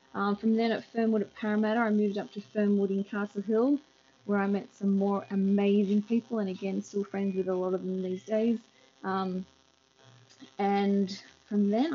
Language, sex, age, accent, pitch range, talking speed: English, female, 20-39, Australian, 185-215 Hz, 185 wpm